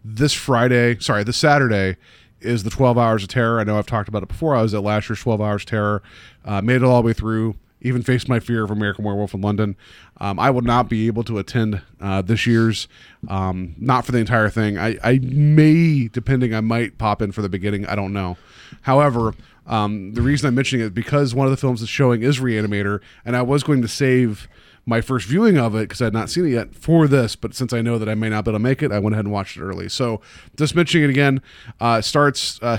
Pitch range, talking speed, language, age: 105-130 Hz, 255 wpm, English, 30-49